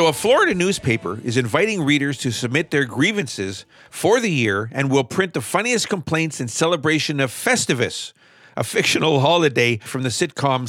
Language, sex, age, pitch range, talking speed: English, male, 50-69, 135-180 Hz, 170 wpm